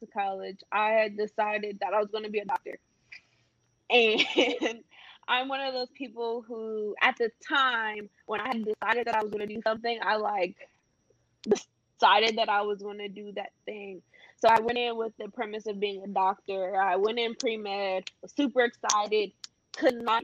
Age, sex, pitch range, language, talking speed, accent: 20-39, female, 205-235 Hz, English, 195 wpm, American